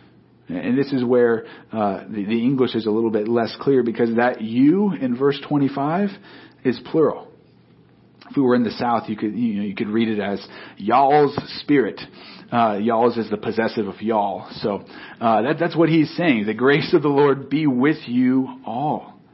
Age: 40-59